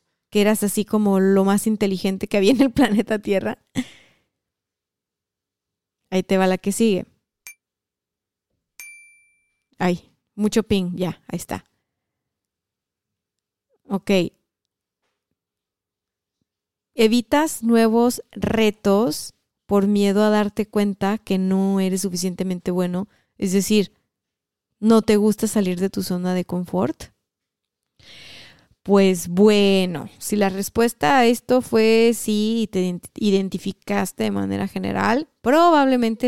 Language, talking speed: Spanish, 110 wpm